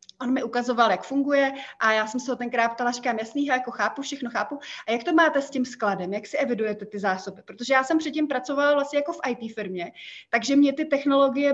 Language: Czech